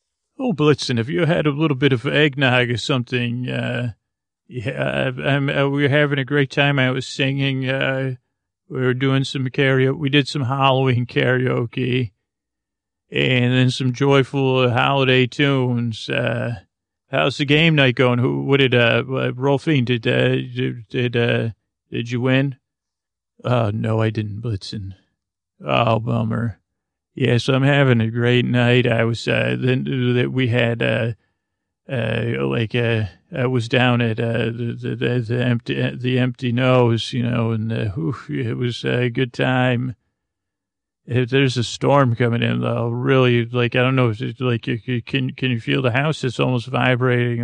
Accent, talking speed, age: American, 170 wpm, 40-59